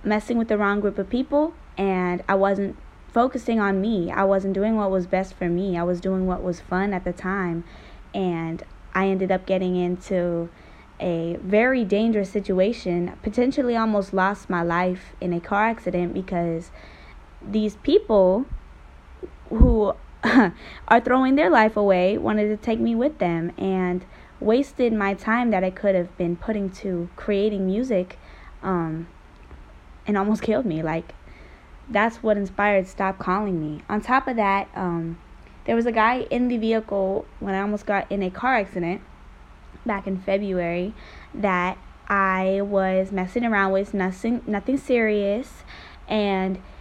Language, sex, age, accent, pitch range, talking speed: English, female, 10-29, American, 180-215 Hz, 155 wpm